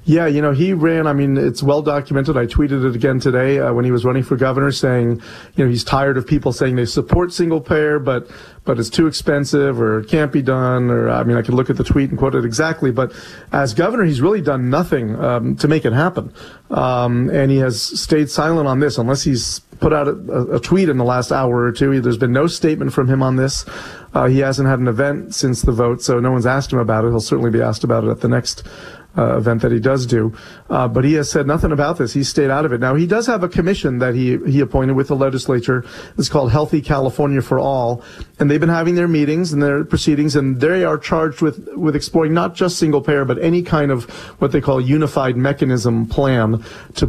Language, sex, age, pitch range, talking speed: English, male, 40-59, 125-150 Hz, 245 wpm